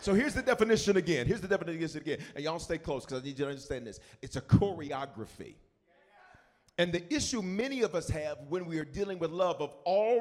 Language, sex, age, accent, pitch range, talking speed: English, male, 40-59, American, 160-210 Hz, 225 wpm